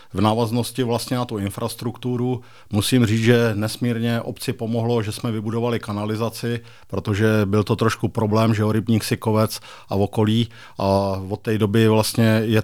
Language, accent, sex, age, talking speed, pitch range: Czech, native, male, 50-69, 160 wpm, 110-115 Hz